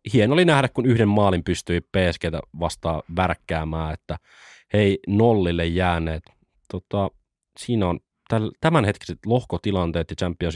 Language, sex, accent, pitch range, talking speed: Finnish, male, native, 85-115 Hz, 120 wpm